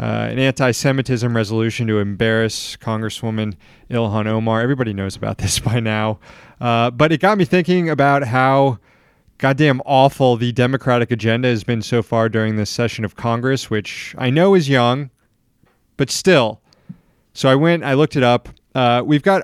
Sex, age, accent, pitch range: male, 30-49, American, 115-145 Hz